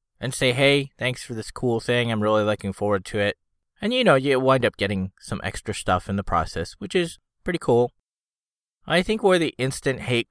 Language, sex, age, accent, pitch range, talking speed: English, male, 20-39, American, 95-120 Hz, 215 wpm